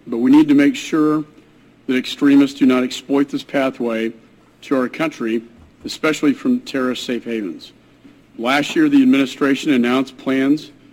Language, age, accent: English, 50-69, American